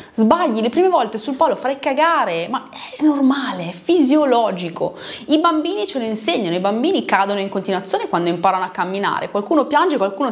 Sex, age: female, 30-49